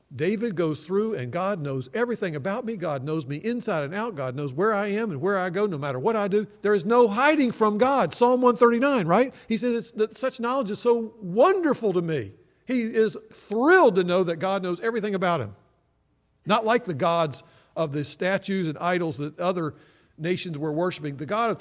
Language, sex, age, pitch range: English, male, 50-69, 160-235 Hz